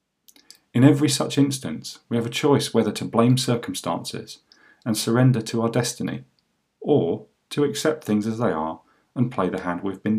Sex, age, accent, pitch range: male, 40-59, British, 105-130 Hz